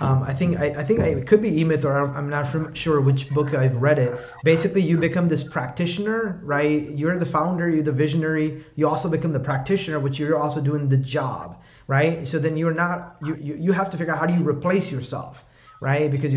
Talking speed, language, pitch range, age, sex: 225 wpm, English, 140-165 Hz, 30-49, male